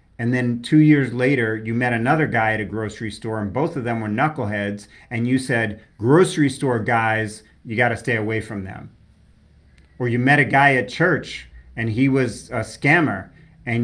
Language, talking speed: English, 195 wpm